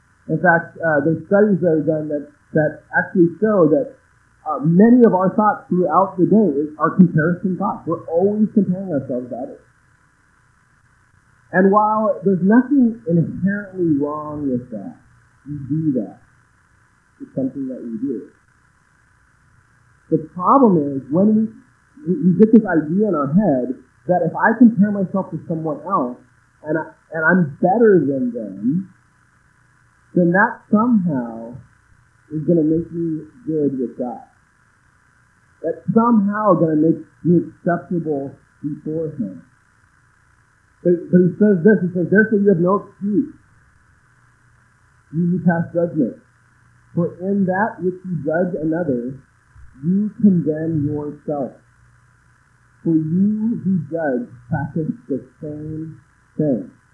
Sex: male